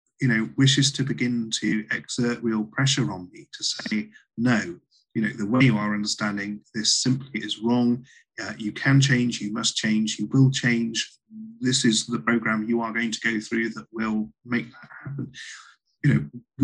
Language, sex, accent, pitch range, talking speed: English, male, British, 110-135 Hz, 190 wpm